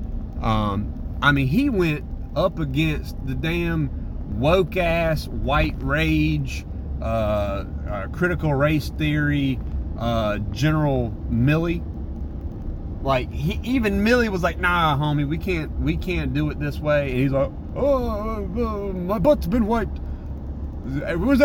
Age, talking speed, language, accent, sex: 30-49, 135 wpm, English, American, male